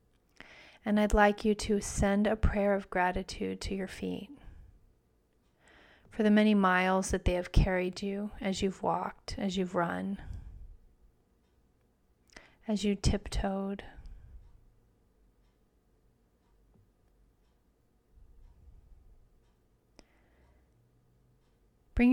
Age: 30-49